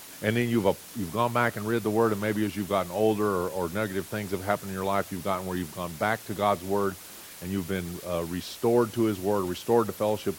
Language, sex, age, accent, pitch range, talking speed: English, male, 40-59, American, 100-130 Hz, 265 wpm